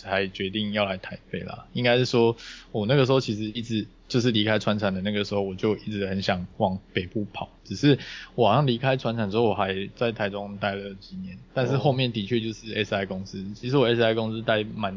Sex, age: male, 20-39